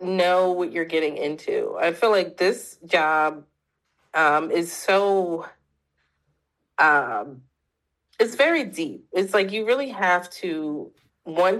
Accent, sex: American, female